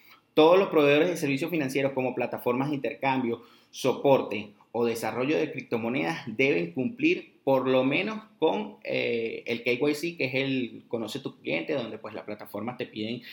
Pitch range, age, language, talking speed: 110-140 Hz, 30-49, Spanish, 160 wpm